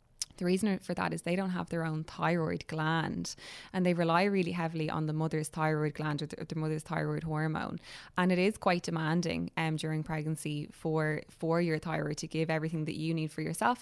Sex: female